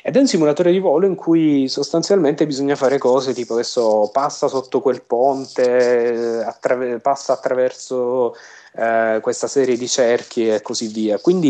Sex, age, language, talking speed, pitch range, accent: male, 30-49, Italian, 155 wpm, 120-145 Hz, native